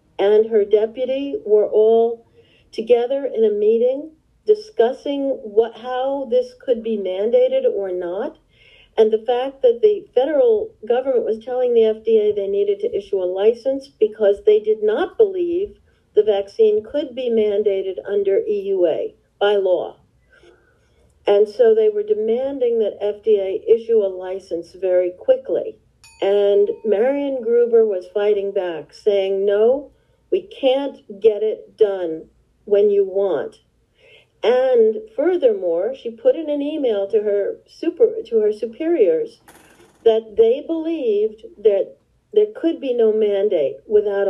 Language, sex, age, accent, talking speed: English, female, 50-69, American, 135 wpm